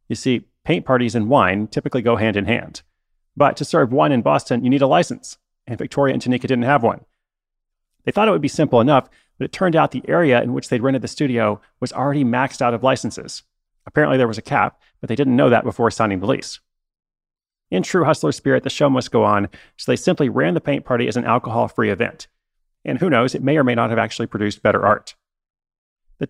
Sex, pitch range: male, 115-140 Hz